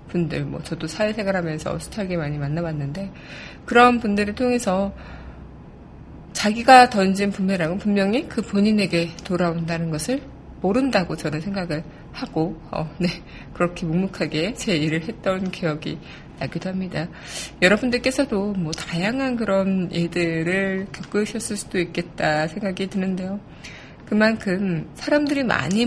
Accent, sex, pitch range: native, female, 165-200 Hz